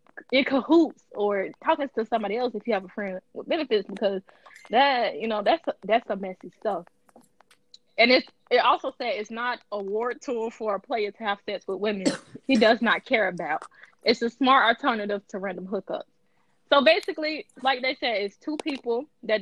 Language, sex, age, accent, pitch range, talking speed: English, female, 20-39, American, 205-260 Hz, 190 wpm